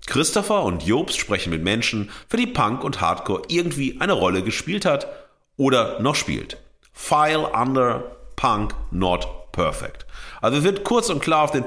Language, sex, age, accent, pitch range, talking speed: German, male, 40-59, German, 105-145 Hz, 160 wpm